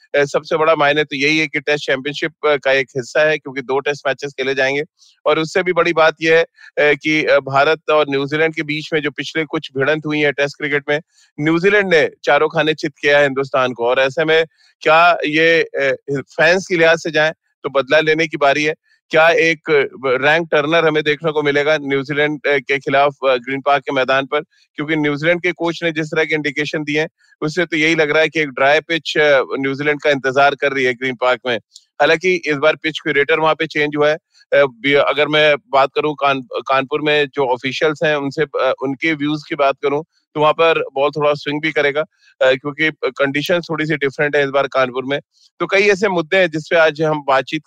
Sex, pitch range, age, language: male, 140-160 Hz, 30-49, Hindi